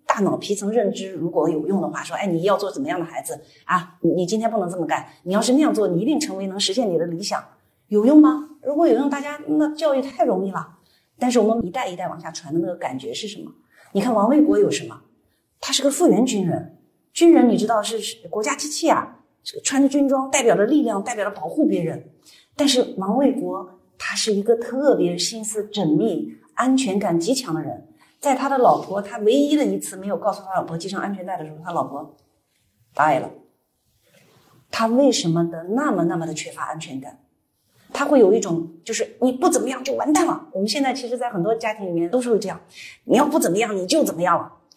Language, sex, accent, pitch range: Chinese, female, native, 175-275 Hz